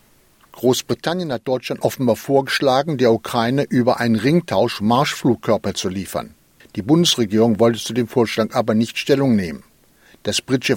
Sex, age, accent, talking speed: male, 60-79, German, 140 wpm